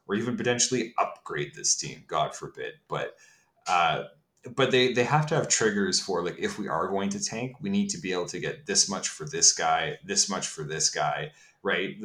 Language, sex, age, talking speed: English, male, 30-49, 215 wpm